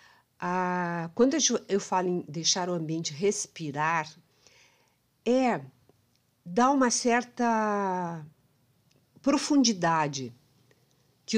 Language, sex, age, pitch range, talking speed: Portuguese, female, 50-69, 165-215 Hz, 75 wpm